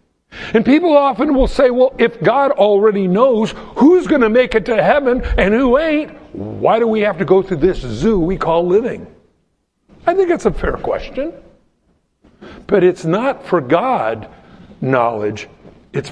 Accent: American